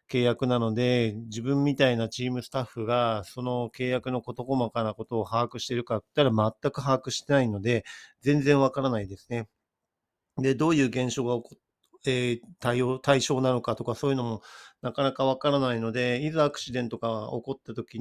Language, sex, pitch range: Japanese, male, 115-140 Hz